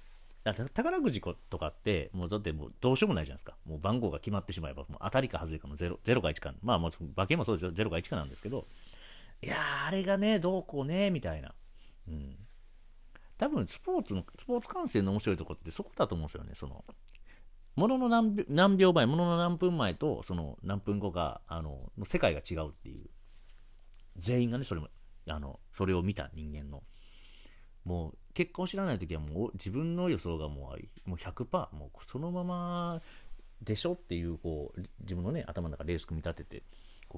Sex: male